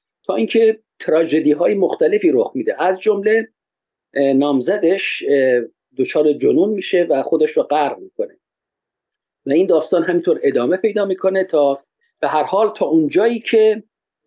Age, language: 50-69, Persian